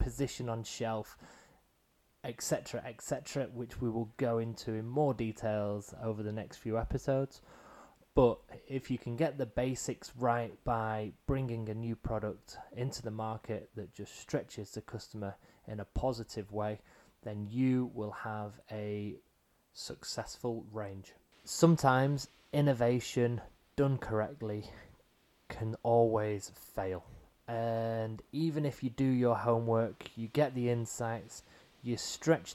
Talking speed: 130 wpm